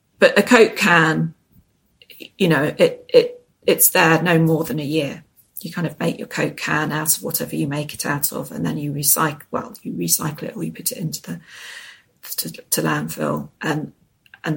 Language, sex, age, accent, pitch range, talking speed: English, female, 40-59, British, 145-170 Hz, 200 wpm